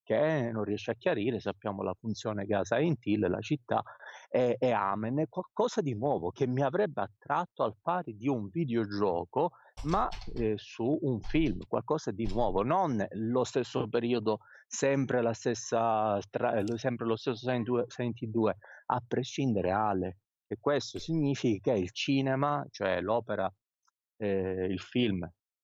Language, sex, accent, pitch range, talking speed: Italian, male, native, 105-135 Hz, 150 wpm